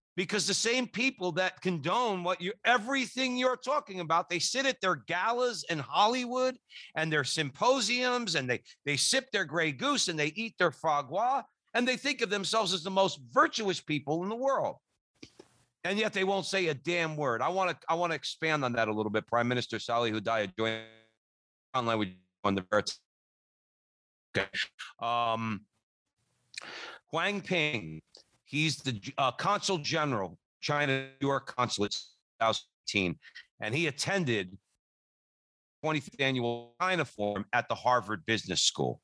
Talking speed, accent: 155 wpm, American